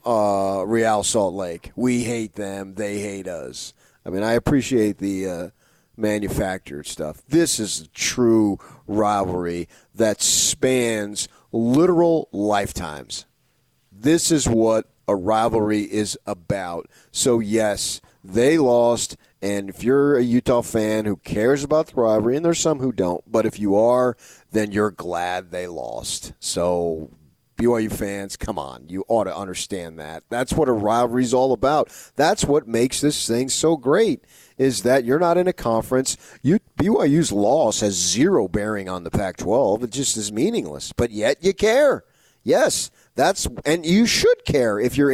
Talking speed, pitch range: 160 wpm, 100-130 Hz